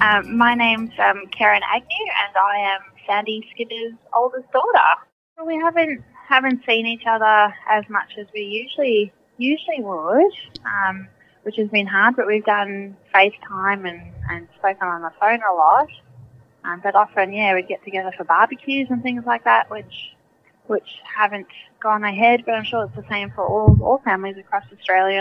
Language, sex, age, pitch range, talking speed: English, female, 20-39, 185-235 Hz, 175 wpm